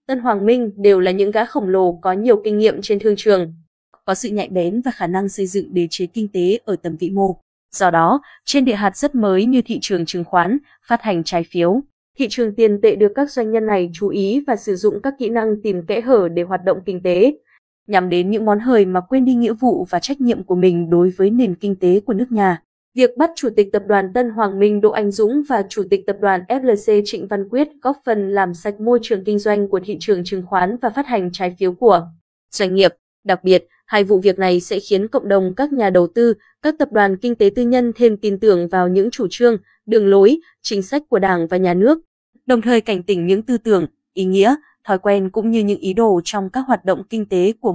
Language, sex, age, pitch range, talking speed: Vietnamese, female, 20-39, 190-235 Hz, 250 wpm